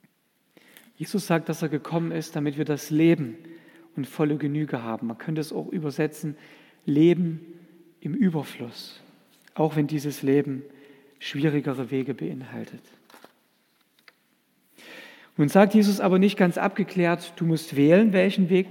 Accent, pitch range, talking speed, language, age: German, 150-195 Hz, 130 wpm, German, 50-69